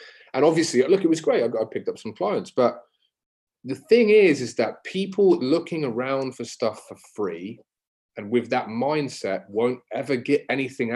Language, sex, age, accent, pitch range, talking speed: English, male, 20-39, British, 110-185 Hz, 175 wpm